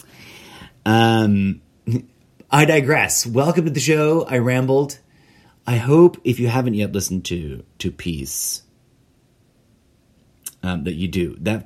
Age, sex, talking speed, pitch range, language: 30-49, male, 125 wpm, 95-125 Hz, English